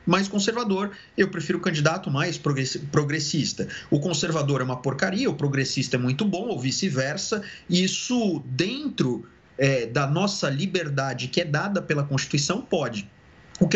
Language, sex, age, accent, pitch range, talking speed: Portuguese, male, 30-49, Brazilian, 145-195 Hz, 145 wpm